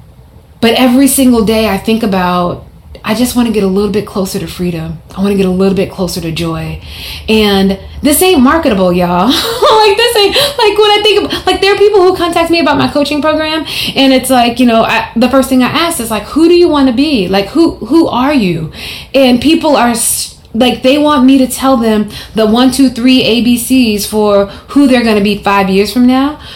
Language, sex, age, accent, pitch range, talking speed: English, female, 20-39, American, 205-275 Hz, 230 wpm